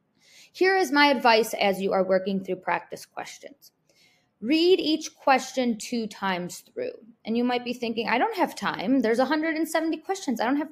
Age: 20-39